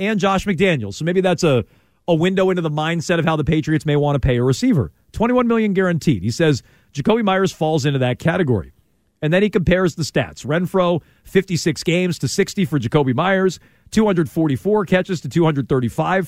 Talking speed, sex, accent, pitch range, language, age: 190 wpm, male, American, 140-190 Hz, English, 40-59